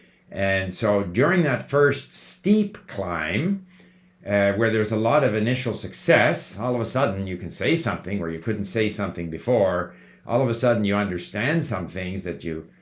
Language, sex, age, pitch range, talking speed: English, male, 50-69, 95-135 Hz, 185 wpm